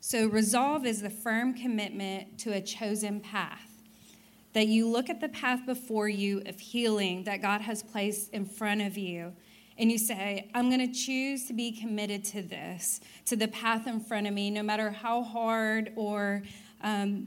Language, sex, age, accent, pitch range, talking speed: English, female, 30-49, American, 210-240 Hz, 185 wpm